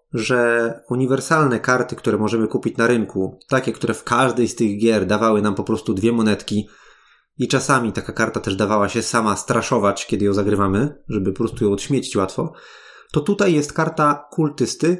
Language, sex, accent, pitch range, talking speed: Polish, male, native, 105-150 Hz, 175 wpm